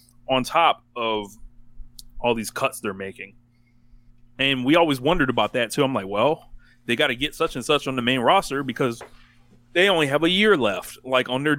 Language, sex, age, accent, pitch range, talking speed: English, male, 20-39, American, 115-130 Hz, 200 wpm